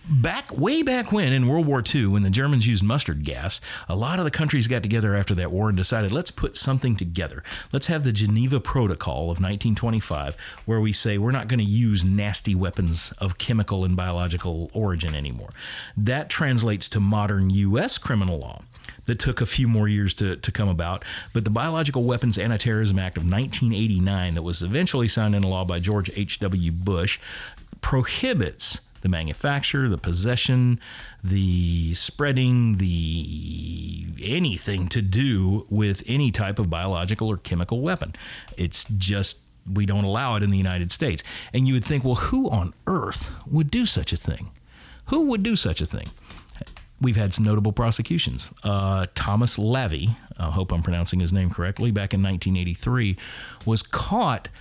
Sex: male